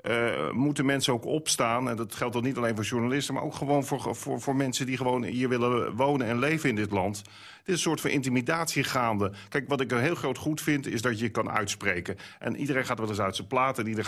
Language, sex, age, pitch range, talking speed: Dutch, male, 40-59, 110-140 Hz, 250 wpm